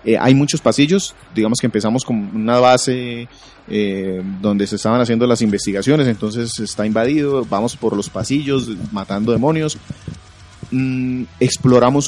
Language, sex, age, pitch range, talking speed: Spanish, male, 30-49, 110-135 Hz, 135 wpm